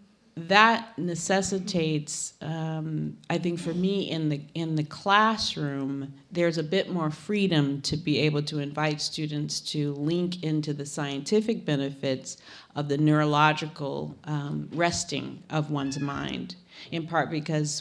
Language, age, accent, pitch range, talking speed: English, 40-59, American, 145-175 Hz, 135 wpm